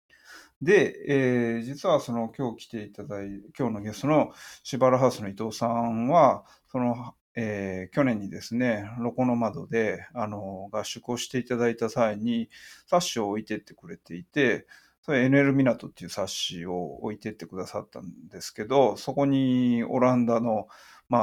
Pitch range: 110-140 Hz